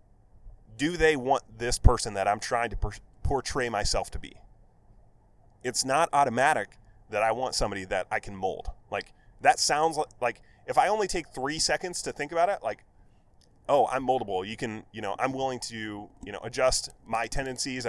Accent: American